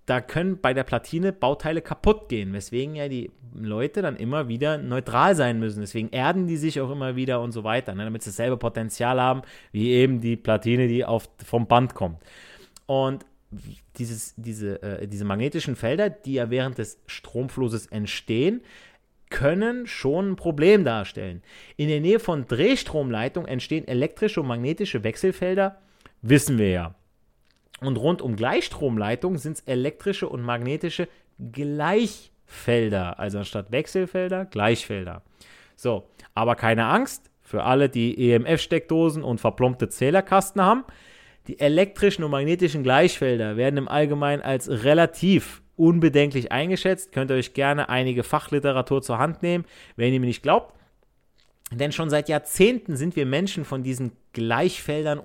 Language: German